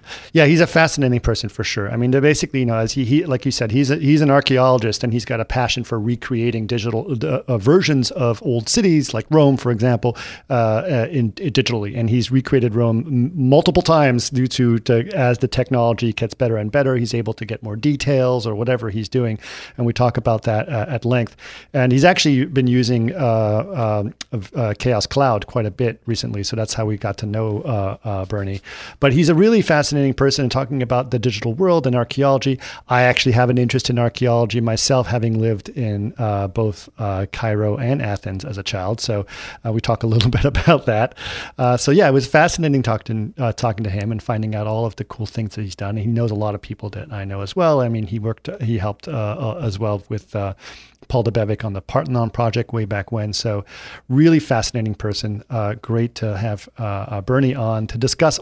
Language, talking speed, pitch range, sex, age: English, 220 wpm, 110-135 Hz, male, 40-59